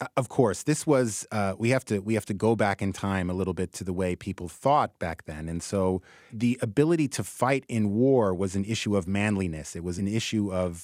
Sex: male